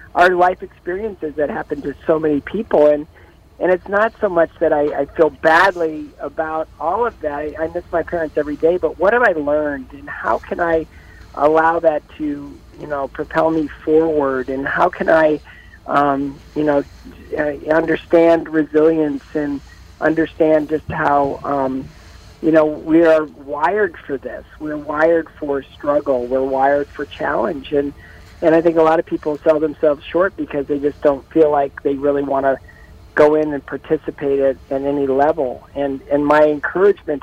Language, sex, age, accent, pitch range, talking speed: English, male, 50-69, American, 140-160 Hz, 175 wpm